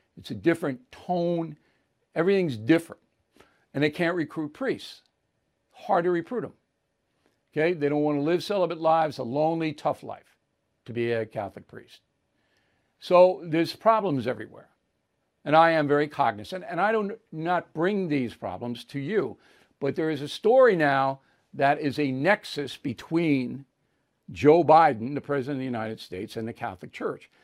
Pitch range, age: 130-170 Hz, 60-79